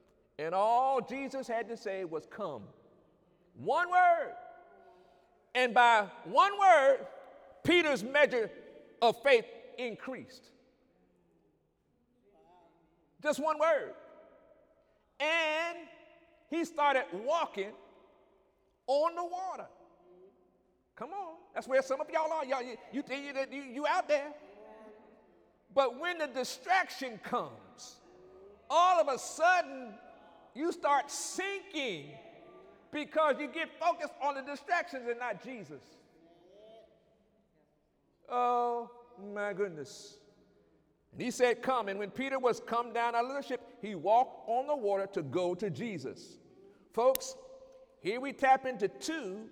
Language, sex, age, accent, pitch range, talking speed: English, male, 50-69, American, 205-310 Hz, 120 wpm